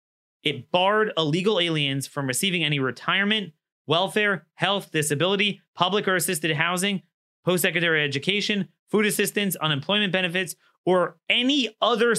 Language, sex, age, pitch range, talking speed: English, male, 30-49, 135-185 Hz, 125 wpm